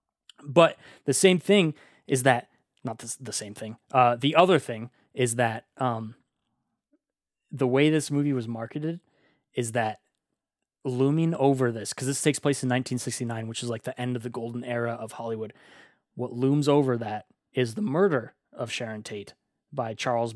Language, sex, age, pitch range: English, male, 20-39, 120-150 Hz